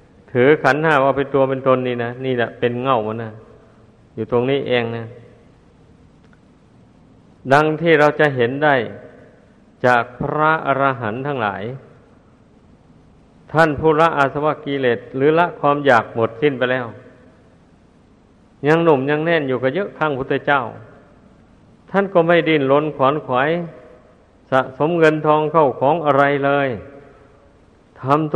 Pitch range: 130-150 Hz